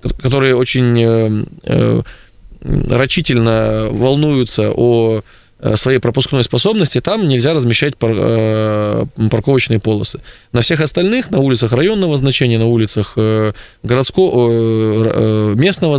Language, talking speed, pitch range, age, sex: Russian, 90 wpm, 115-140 Hz, 20-39, male